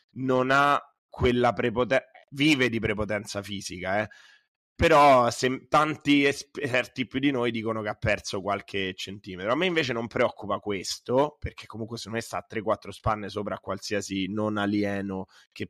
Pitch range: 100-125 Hz